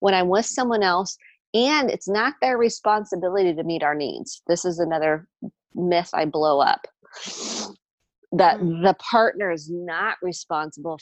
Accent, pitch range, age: American, 165-200 Hz, 30-49